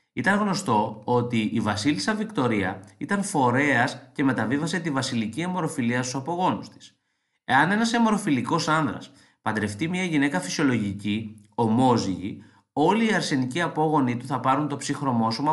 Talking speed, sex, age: 130 wpm, male, 20-39